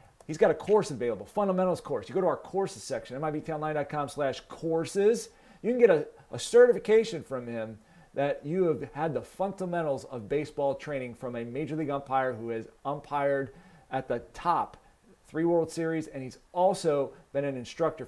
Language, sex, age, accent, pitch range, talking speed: English, male, 40-59, American, 135-180 Hz, 175 wpm